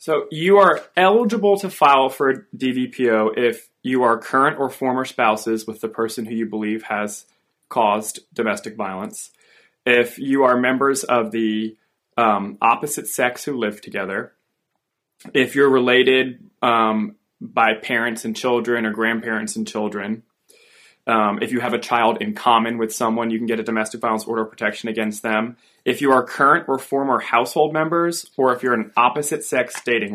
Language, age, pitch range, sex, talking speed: English, 20-39, 110-130 Hz, male, 170 wpm